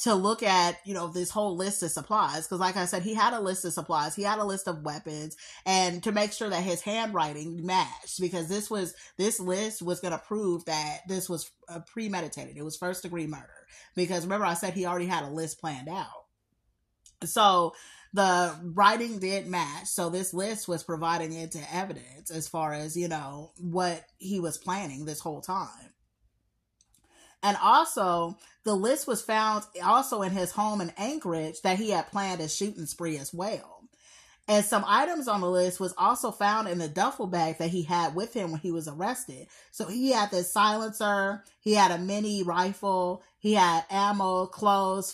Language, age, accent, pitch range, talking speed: English, 30-49, American, 170-205 Hz, 190 wpm